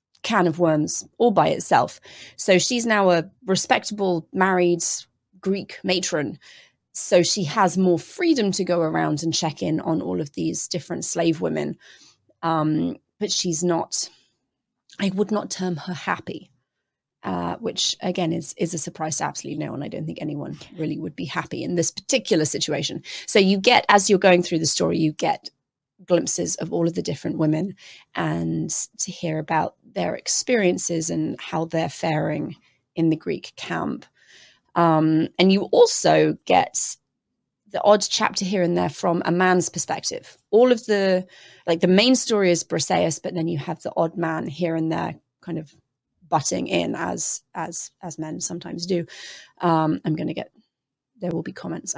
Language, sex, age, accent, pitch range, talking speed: English, female, 30-49, British, 160-190 Hz, 170 wpm